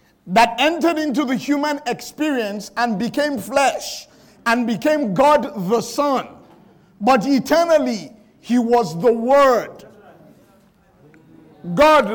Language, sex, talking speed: English, male, 105 wpm